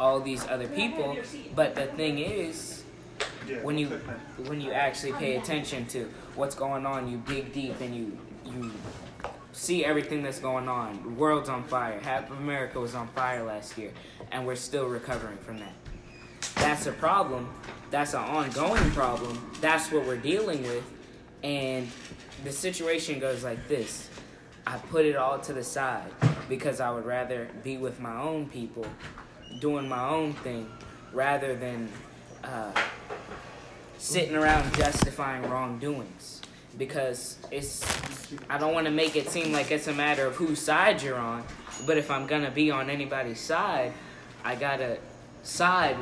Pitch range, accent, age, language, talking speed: 120-145 Hz, American, 20-39, English, 160 wpm